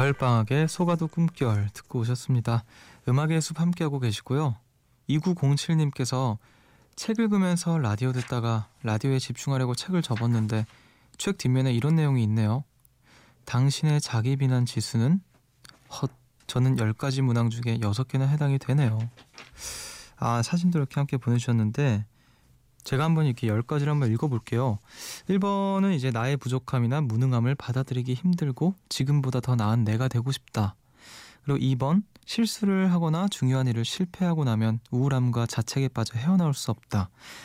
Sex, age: male, 20-39